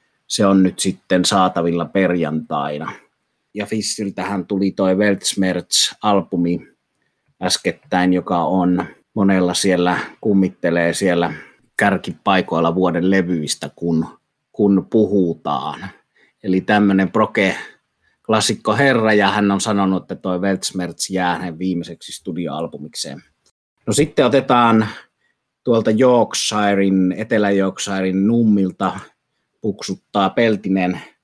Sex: male